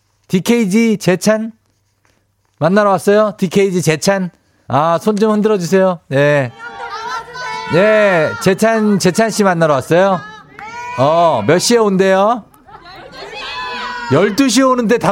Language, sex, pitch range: Korean, male, 145-235 Hz